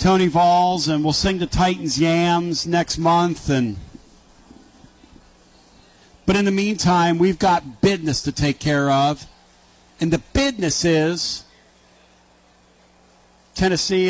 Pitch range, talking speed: 145-180 Hz, 115 wpm